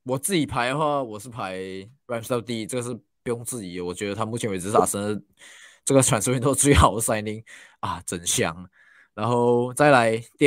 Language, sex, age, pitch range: Chinese, male, 20-39, 115-145 Hz